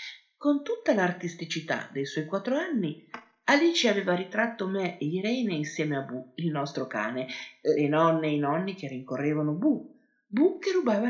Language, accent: Italian, native